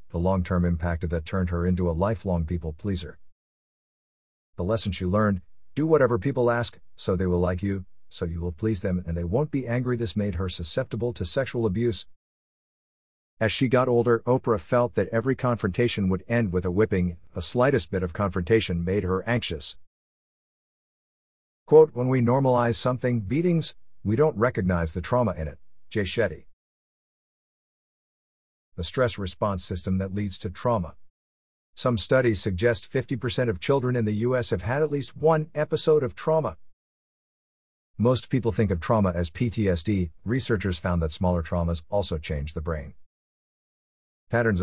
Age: 50-69